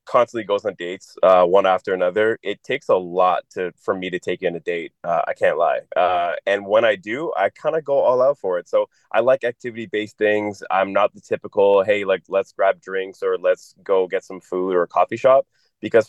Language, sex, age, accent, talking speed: English, male, 20-39, American, 235 wpm